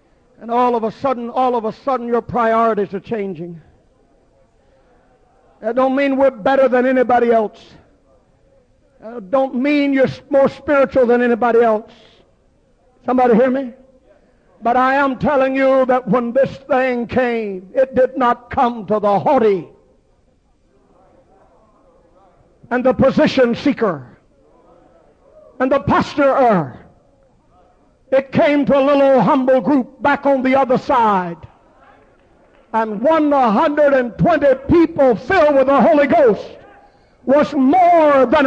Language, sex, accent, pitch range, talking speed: English, male, American, 240-290 Hz, 125 wpm